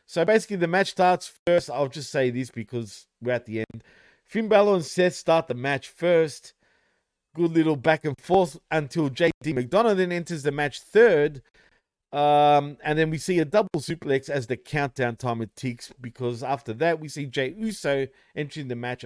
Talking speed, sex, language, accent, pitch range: 185 wpm, male, English, Australian, 125-170 Hz